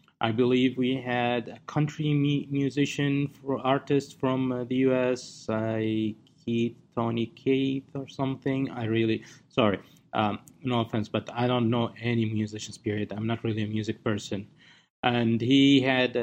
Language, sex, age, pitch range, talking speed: English, male, 30-49, 115-135 Hz, 145 wpm